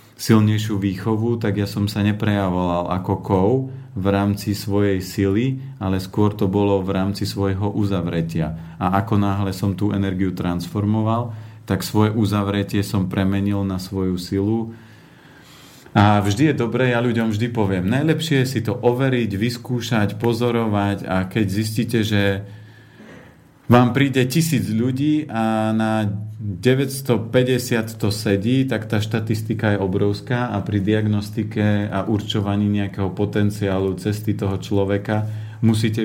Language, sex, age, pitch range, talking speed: Slovak, male, 40-59, 100-115 Hz, 135 wpm